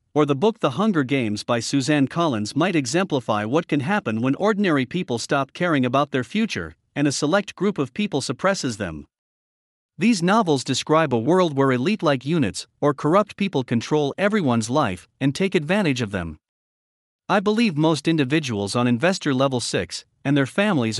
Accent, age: American, 50-69